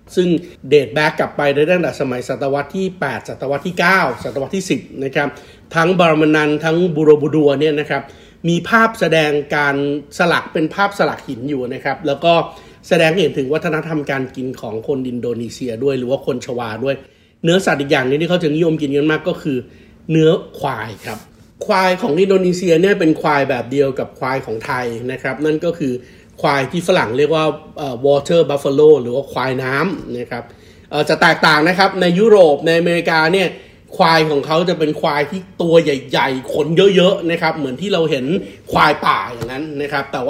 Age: 60-79